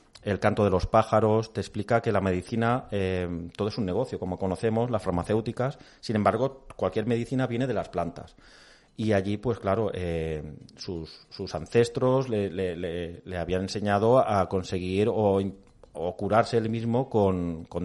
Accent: Spanish